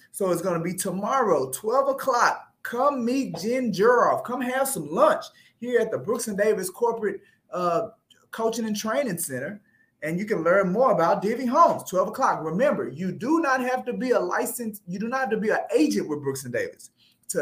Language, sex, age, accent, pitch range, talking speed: English, male, 30-49, American, 185-250 Hz, 205 wpm